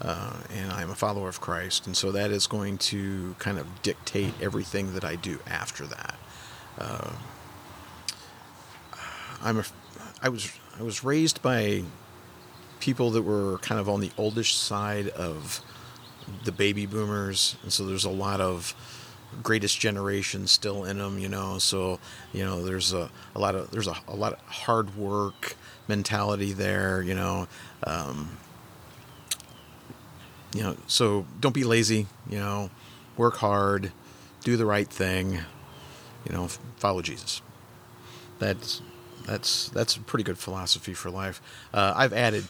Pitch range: 95-120 Hz